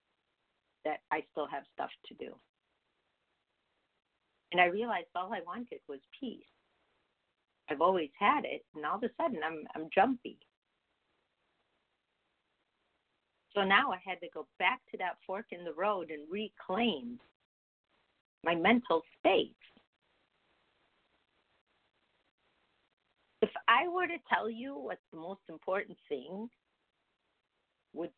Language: English